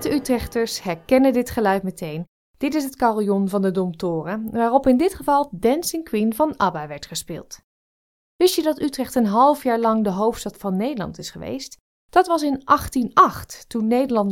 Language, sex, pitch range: Dutch, female, 190-270 Hz